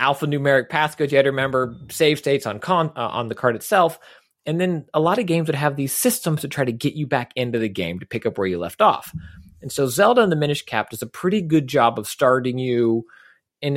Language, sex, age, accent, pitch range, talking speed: English, male, 30-49, American, 115-155 Hz, 250 wpm